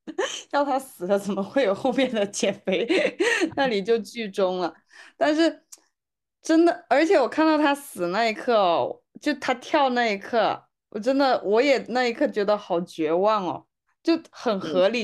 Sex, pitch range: female, 185-245 Hz